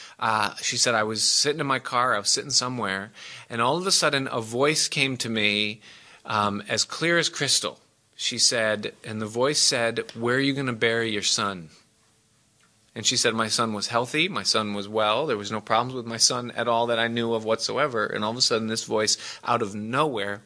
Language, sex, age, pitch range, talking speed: English, male, 30-49, 110-130 Hz, 225 wpm